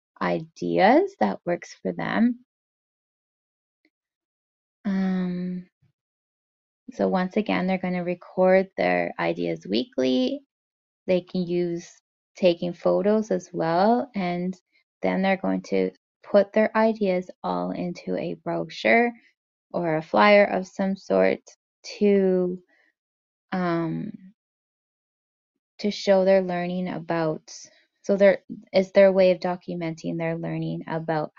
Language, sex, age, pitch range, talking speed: English, female, 20-39, 165-210 Hz, 110 wpm